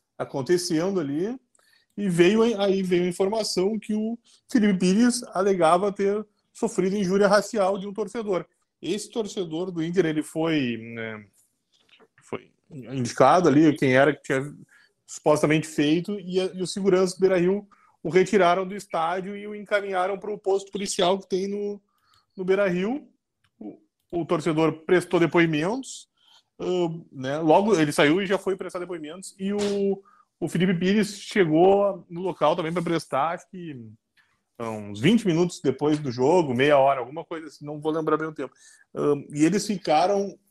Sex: male